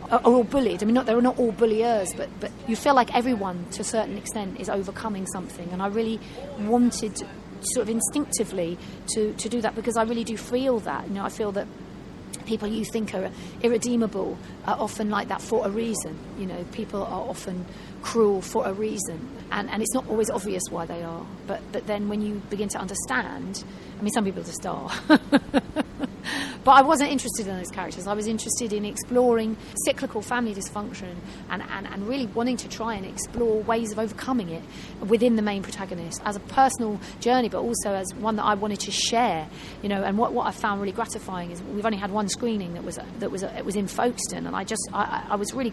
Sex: female